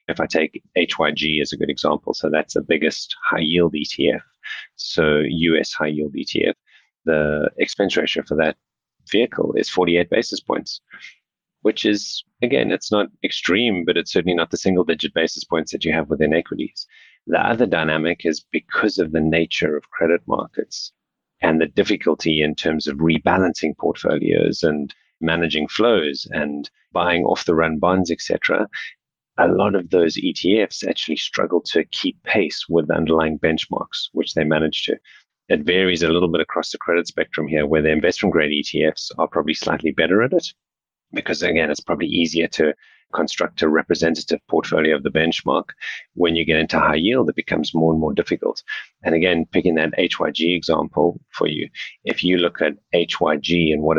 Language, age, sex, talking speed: English, 30-49, male, 170 wpm